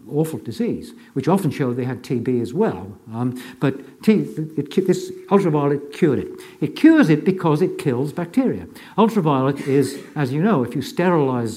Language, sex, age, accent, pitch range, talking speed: English, male, 60-79, British, 120-170 Hz, 175 wpm